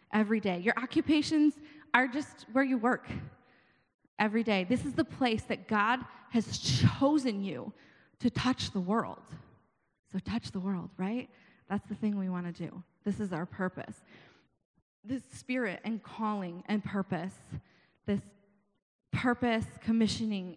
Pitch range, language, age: 190-235 Hz, English, 20-39